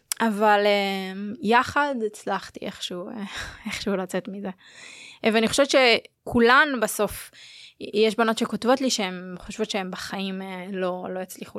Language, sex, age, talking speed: Hebrew, female, 20-39, 115 wpm